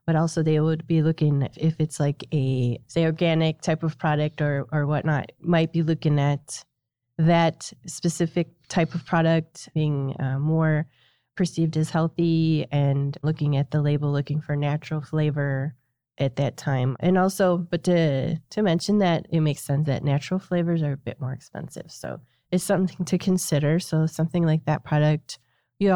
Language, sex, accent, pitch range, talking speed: English, female, American, 145-175 Hz, 170 wpm